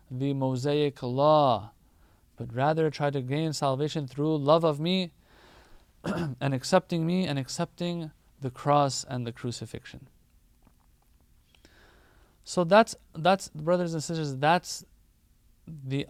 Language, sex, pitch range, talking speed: English, male, 120-160 Hz, 115 wpm